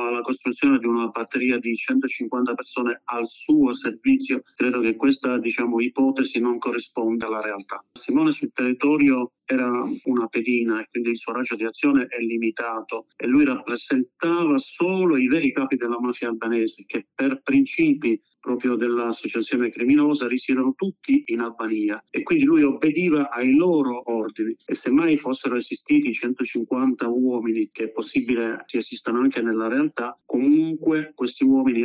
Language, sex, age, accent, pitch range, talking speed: Italian, male, 40-59, native, 115-185 Hz, 150 wpm